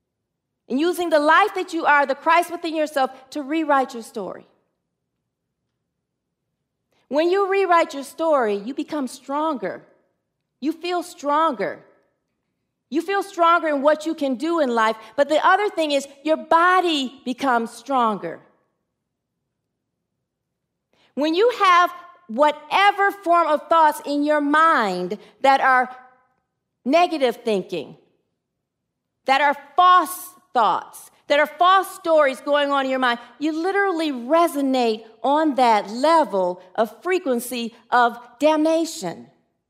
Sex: female